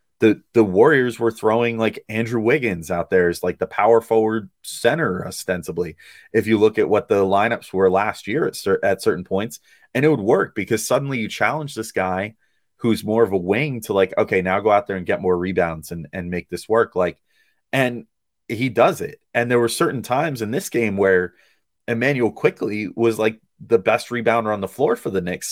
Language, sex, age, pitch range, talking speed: English, male, 30-49, 95-125 Hz, 210 wpm